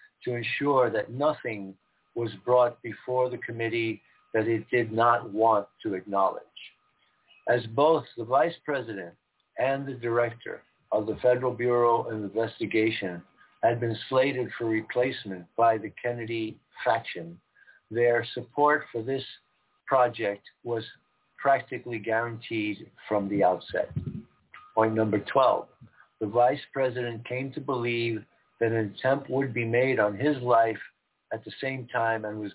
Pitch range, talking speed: 110-125 Hz, 135 wpm